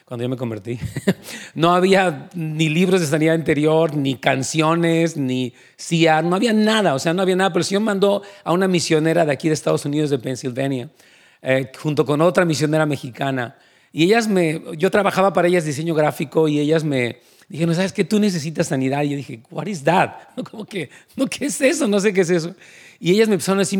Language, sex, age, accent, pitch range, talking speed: Spanish, male, 40-59, Mexican, 155-200 Hz, 210 wpm